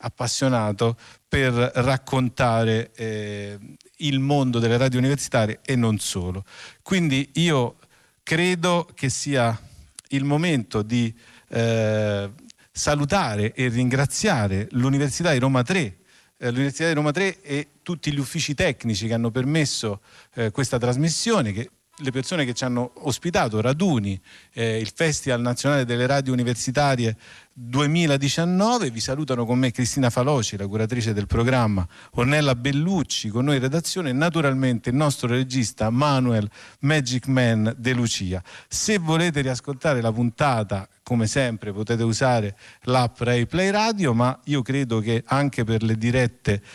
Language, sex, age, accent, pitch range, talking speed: Italian, male, 50-69, native, 115-145 Hz, 135 wpm